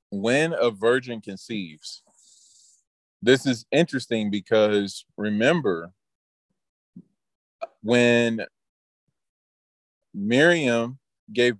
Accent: American